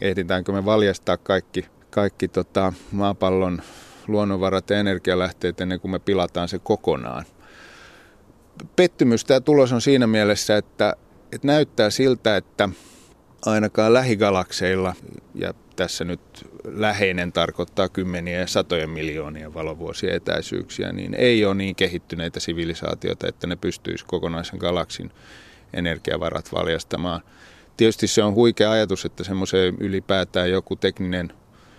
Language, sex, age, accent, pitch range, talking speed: Finnish, male, 30-49, native, 90-105 Hz, 115 wpm